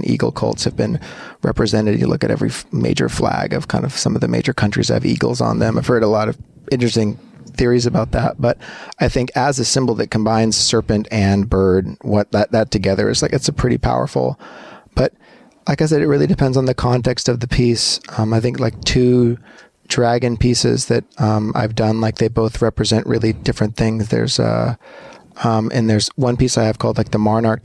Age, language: 30-49, English